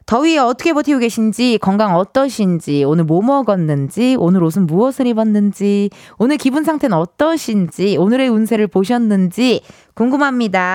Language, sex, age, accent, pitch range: Korean, female, 20-39, native, 195-300 Hz